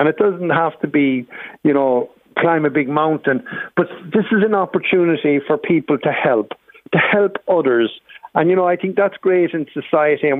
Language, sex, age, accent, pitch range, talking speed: English, male, 60-79, Irish, 145-185 Hz, 195 wpm